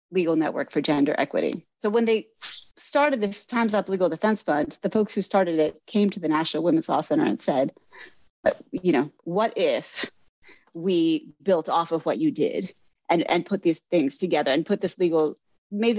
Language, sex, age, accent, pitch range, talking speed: English, female, 30-49, American, 165-215 Hz, 190 wpm